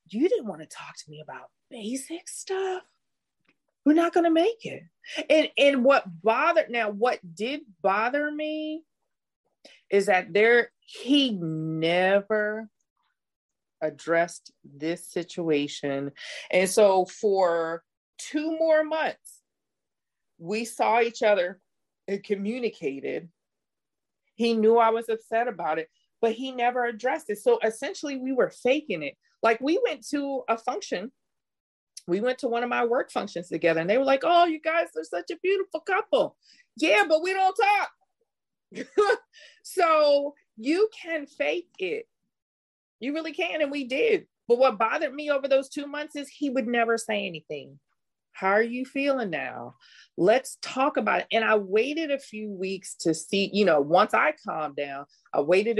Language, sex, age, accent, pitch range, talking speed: English, female, 30-49, American, 195-305 Hz, 155 wpm